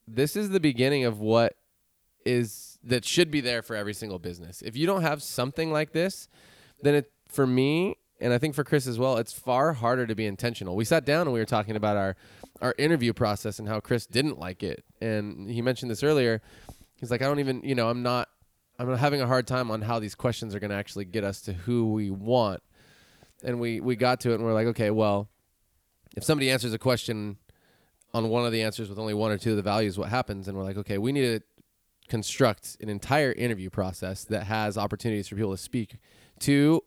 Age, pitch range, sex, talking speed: 20-39, 105-130 Hz, male, 230 wpm